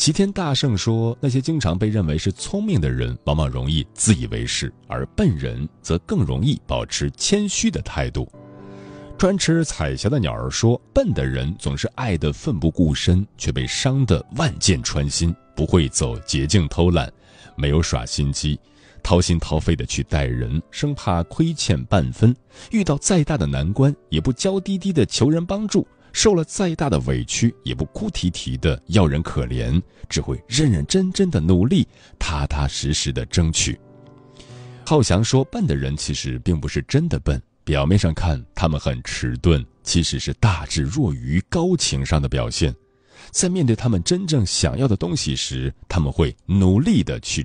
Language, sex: Chinese, male